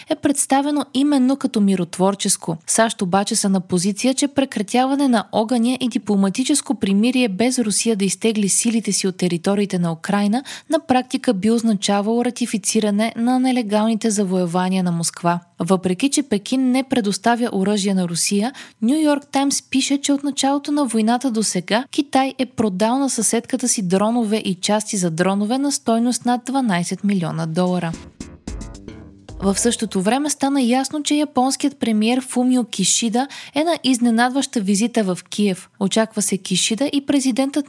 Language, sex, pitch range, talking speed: Bulgarian, female, 195-255 Hz, 150 wpm